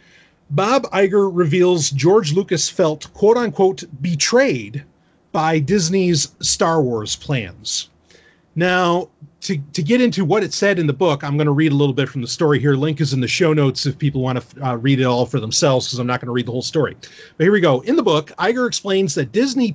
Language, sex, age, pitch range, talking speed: English, male, 30-49, 140-195 Hz, 215 wpm